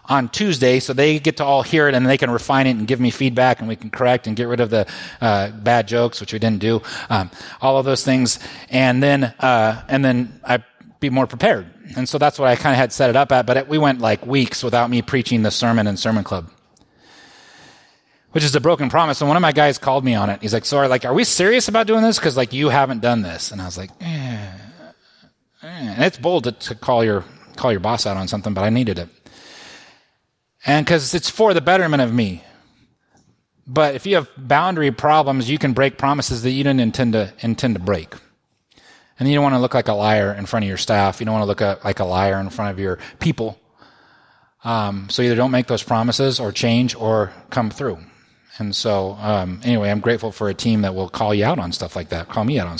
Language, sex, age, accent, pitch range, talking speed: English, male, 30-49, American, 105-140 Hz, 245 wpm